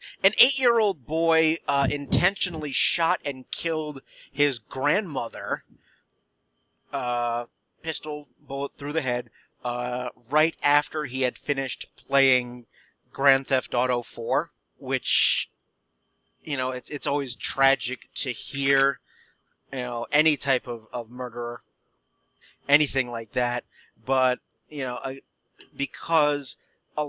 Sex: male